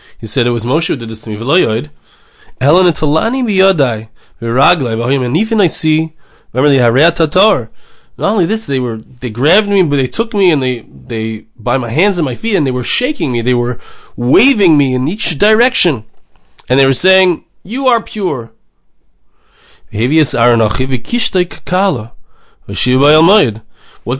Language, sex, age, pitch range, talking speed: English, male, 30-49, 115-180 Hz, 125 wpm